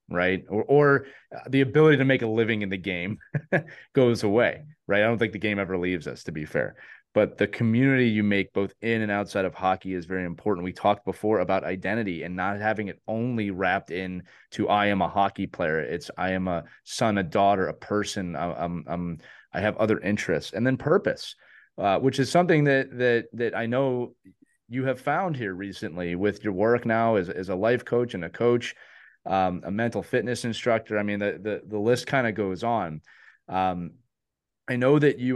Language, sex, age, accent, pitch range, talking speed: English, male, 30-49, American, 95-120 Hz, 210 wpm